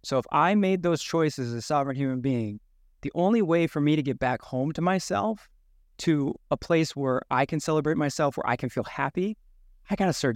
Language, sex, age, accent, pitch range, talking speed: English, male, 20-39, American, 130-180 Hz, 225 wpm